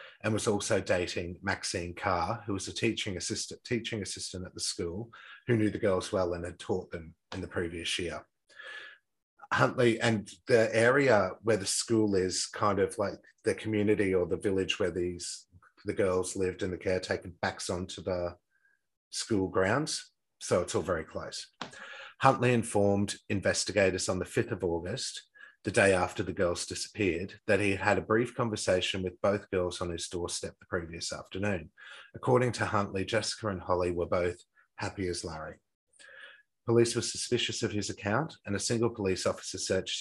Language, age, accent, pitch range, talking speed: English, 30-49, Australian, 90-110 Hz, 170 wpm